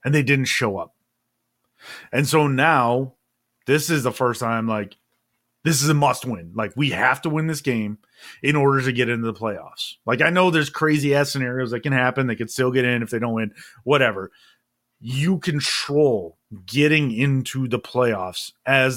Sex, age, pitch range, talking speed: male, 30-49, 115-140 Hz, 190 wpm